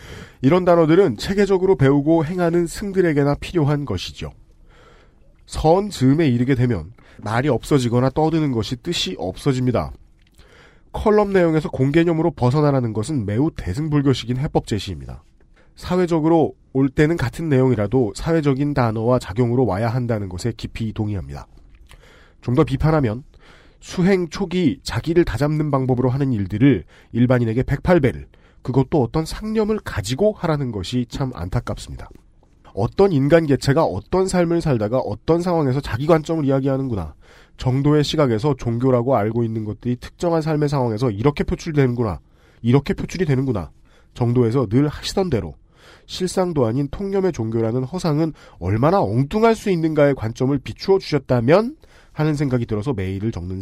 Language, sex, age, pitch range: Korean, male, 40-59, 115-160 Hz